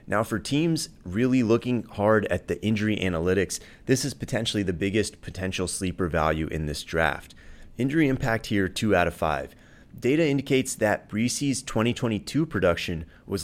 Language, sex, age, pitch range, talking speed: English, male, 30-49, 90-115 Hz, 155 wpm